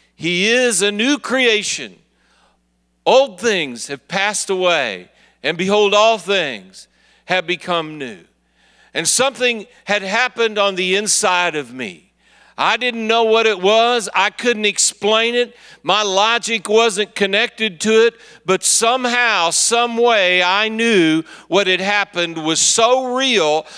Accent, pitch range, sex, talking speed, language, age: American, 175-225 Hz, male, 135 wpm, English, 50-69